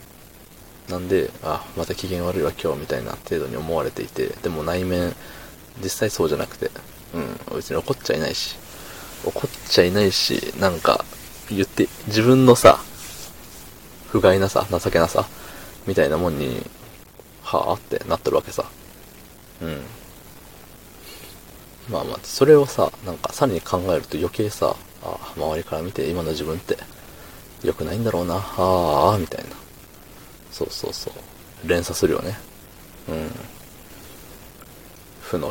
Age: 20-39